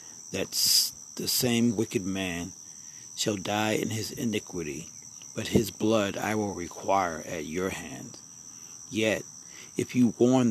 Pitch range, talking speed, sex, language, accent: 100-120 Hz, 130 wpm, male, English, American